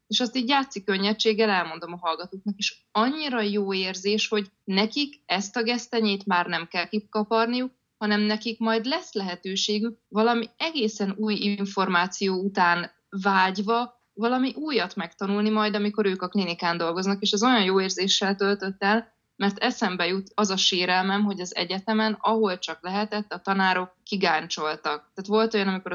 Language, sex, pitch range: Hungarian, female, 180-225 Hz